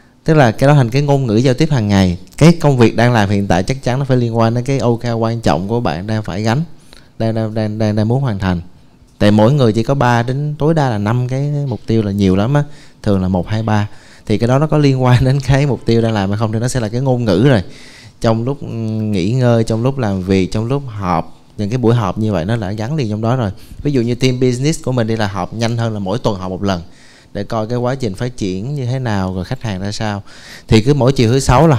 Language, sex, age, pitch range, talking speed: Vietnamese, male, 20-39, 105-130 Hz, 290 wpm